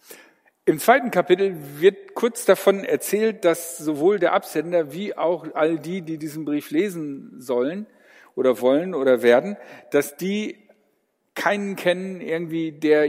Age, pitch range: 50-69, 145-185 Hz